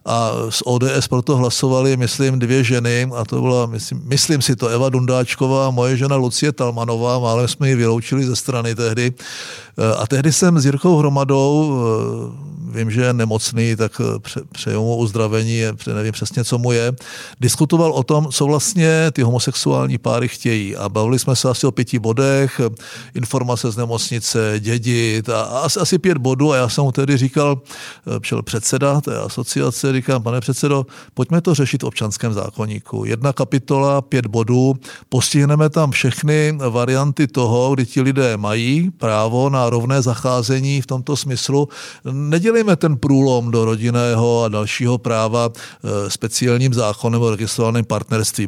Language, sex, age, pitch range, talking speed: Czech, male, 50-69, 115-140 Hz, 155 wpm